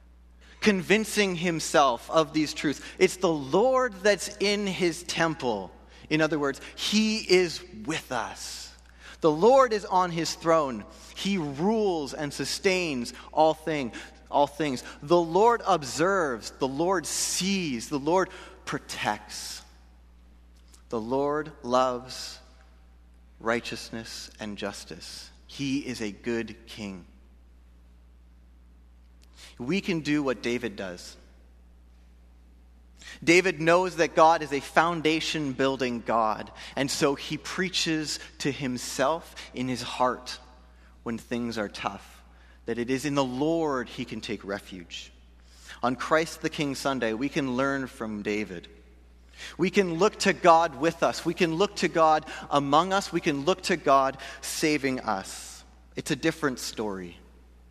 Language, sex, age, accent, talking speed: English, male, 30-49, American, 130 wpm